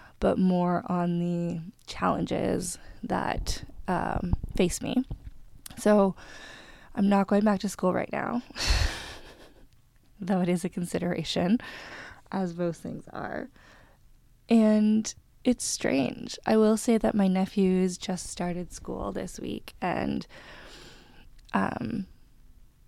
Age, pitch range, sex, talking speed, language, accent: 20-39, 180-215 Hz, female, 115 wpm, English, American